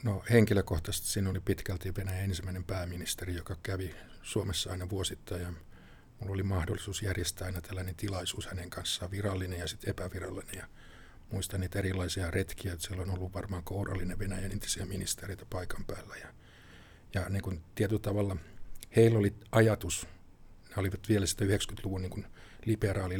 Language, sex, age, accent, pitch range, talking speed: Finnish, male, 50-69, native, 90-105 Hz, 155 wpm